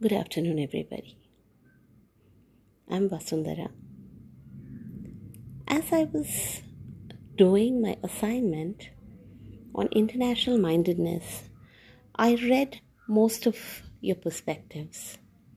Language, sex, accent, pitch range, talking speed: English, female, Indian, 150-215 Hz, 80 wpm